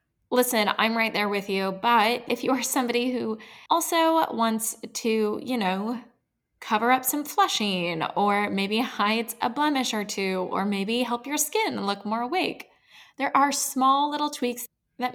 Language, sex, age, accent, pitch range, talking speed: English, female, 10-29, American, 205-270 Hz, 165 wpm